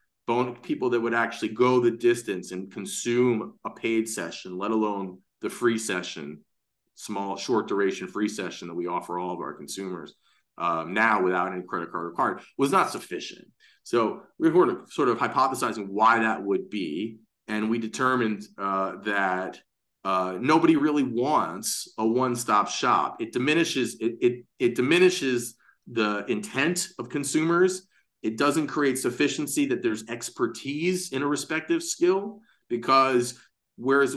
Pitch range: 110-145 Hz